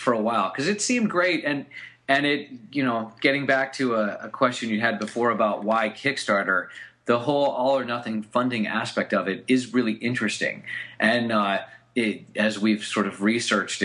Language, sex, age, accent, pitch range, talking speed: English, male, 30-49, American, 105-130 Hz, 190 wpm